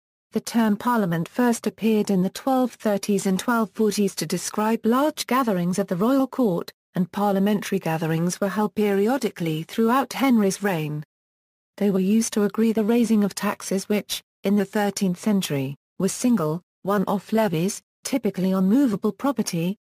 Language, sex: English, female